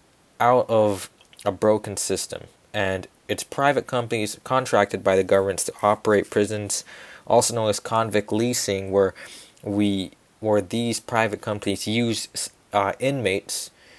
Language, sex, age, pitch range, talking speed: English, male, 20-39, 100-115 Hz, 130 wpm